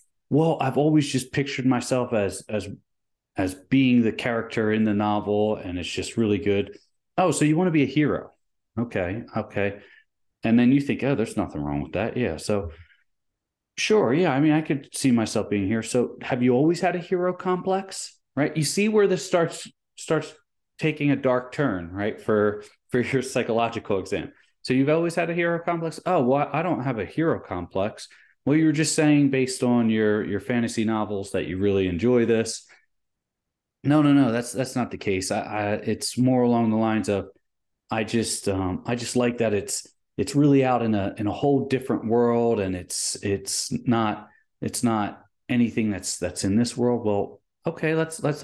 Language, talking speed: English, 195 wpm